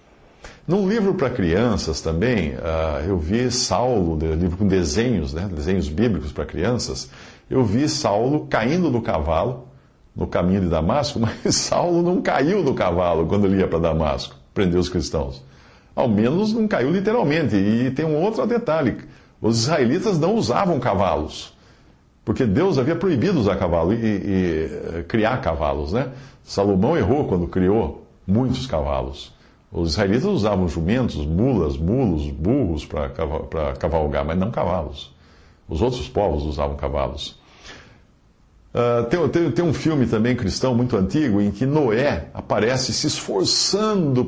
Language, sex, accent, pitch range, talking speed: English, male, Brazilian, 85-130 Hz, 145 wpm